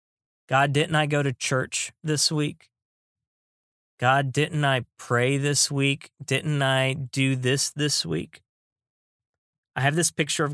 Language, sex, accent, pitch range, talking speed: English, male, American, 125-150 Hz, 140 wpm